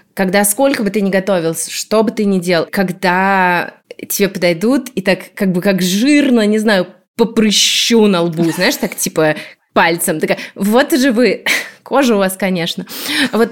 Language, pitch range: Russian, 190-245 Hz